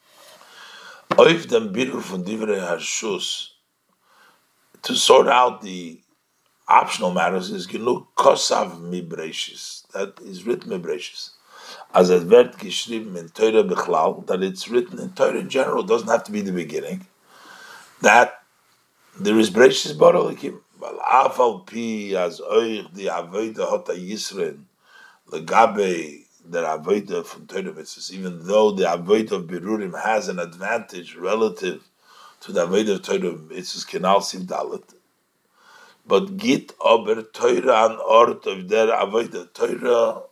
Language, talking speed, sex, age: English, 95 wpm, male, 60-79